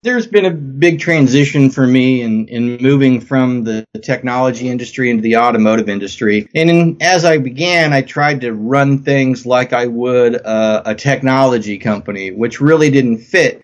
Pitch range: 115-140 Hz